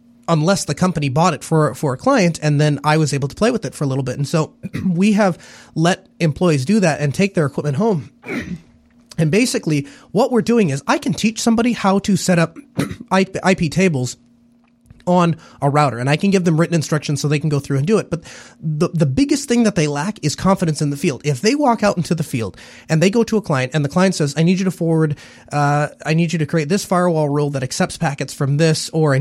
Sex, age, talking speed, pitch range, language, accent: male, 30-49, 245 wpm, 145-190 Hz, English, American